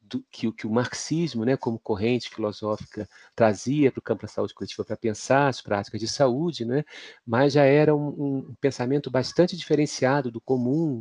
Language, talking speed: Portuguese, 175 wpm